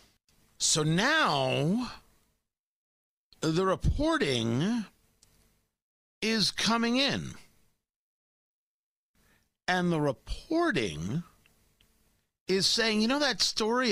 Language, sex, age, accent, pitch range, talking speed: English, male, 50-69, American, 145-200 Hz, 70 wpm